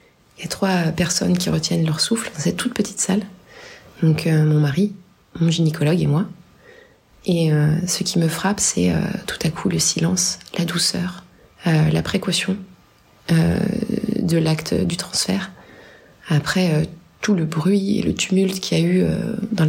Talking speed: 175 wpm